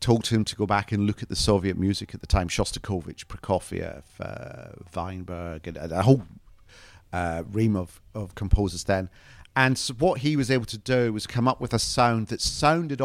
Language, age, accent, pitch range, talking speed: English, 40-59, British, 90-110 Hz, 200 wpm